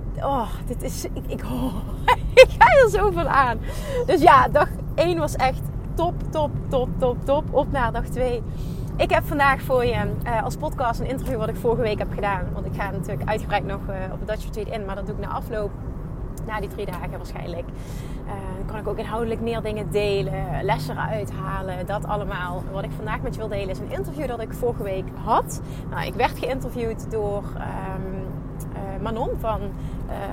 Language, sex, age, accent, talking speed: Dutch, female, 30-49, Dutch, 200 wpm